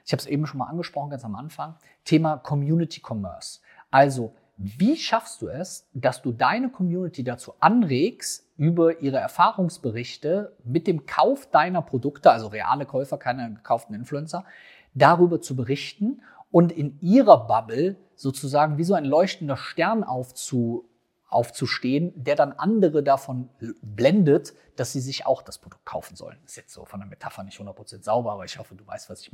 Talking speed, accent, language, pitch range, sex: 165 wpm, German, German, 125-165 Hz, male